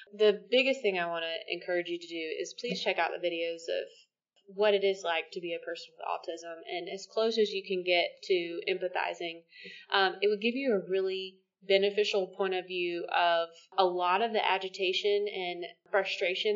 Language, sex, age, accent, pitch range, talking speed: English, female, 20-39, American, 175-205 Hz, 200 wpm